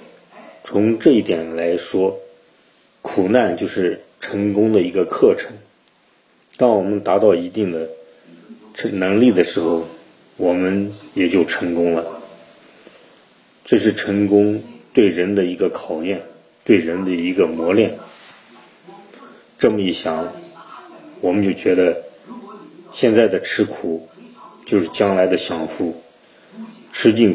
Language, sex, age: Chinese, male, 30-49